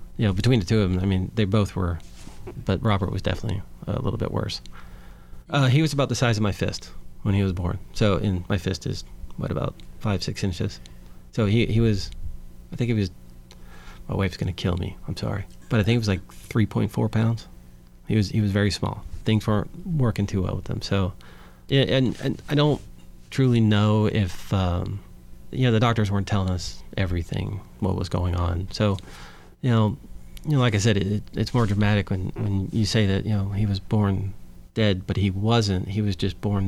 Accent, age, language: American, 30-49, English